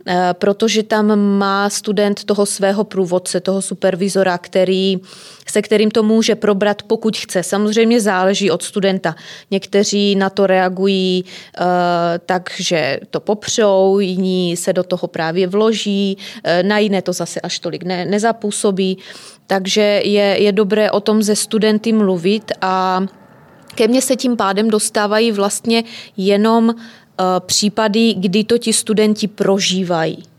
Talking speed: 130 wpm